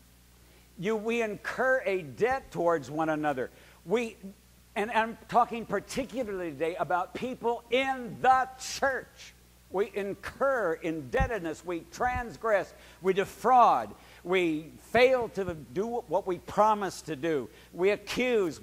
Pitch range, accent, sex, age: 130-205 Hz, American, male, 60-79